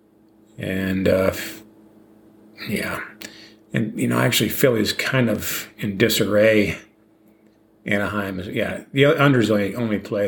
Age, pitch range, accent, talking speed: 40-59, 105-120 Hz, American, 110 wpm